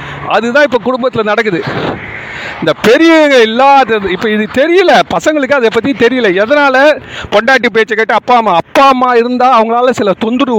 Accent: native